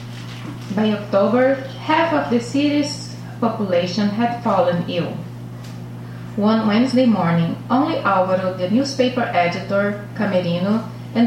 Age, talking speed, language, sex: 30-49, 105 wpm, English, female